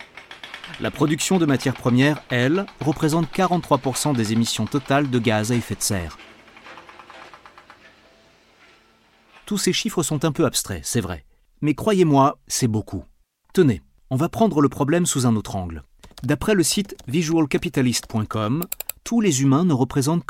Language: French